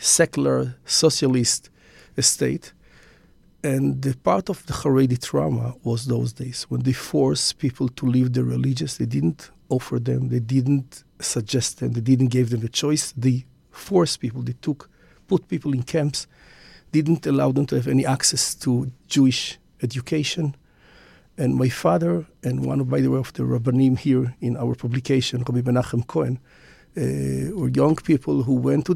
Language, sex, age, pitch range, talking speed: English, male, 50-69, 120-140 Hz, 165 wpm